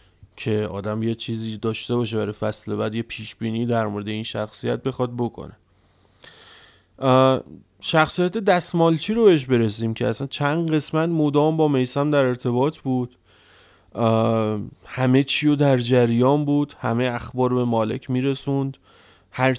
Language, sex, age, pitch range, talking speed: Persian, male, 30-49, 115-130 Hz, 145 wpm